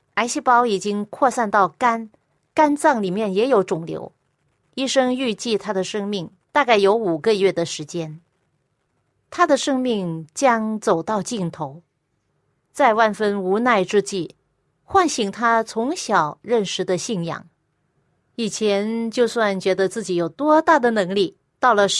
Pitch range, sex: 185-245 Hz, female